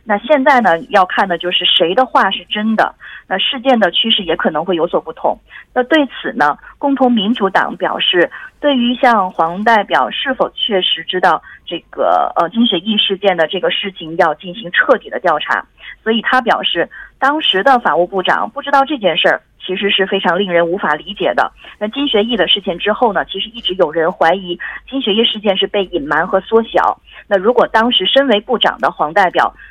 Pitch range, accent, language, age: 180-245 Hz, Chinese, Korean, 30-49